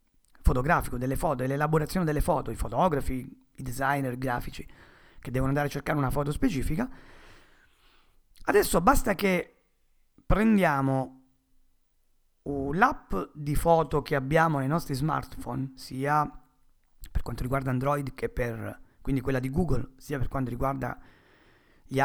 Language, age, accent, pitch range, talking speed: Italian, 40-59, native, 125-160 Hz, 130 wpm